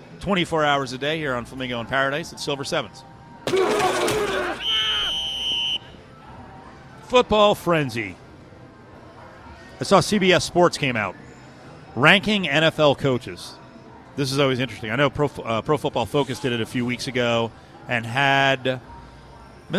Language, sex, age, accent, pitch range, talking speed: English, male, 40-59, American, 120-150 Hz, 130 wpm